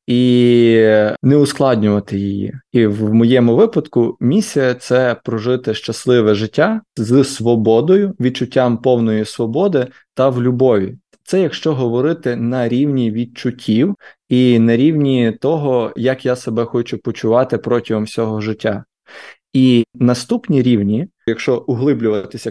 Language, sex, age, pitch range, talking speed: Ukrainian, male, 20-39, 110-135 Hz, 120 wpm